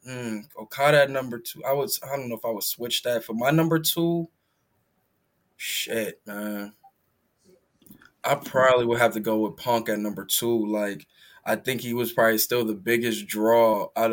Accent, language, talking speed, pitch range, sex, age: American, English, 185 wpm, 110-120 Hz, male, 10-29